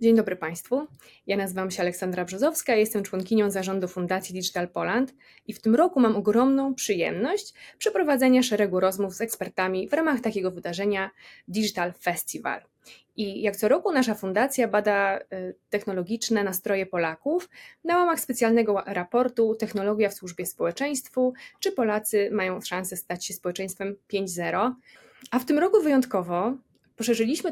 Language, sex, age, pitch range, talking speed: Polish, female, 20-39, 190-255 Hz, 140 wpm